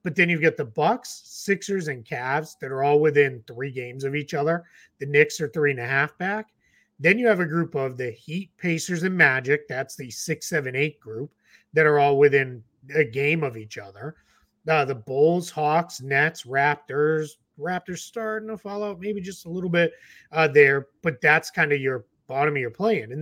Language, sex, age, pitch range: English, male, 30-49, 140-180 Hz